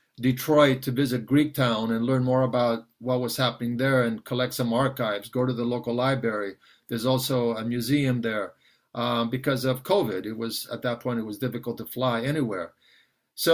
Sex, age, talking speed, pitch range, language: male, 50-69, 190 wpm, 125-145 Hz, English